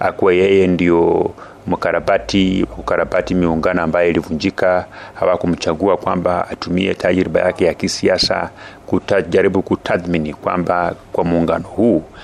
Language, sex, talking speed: Swahili, male, 105 wpm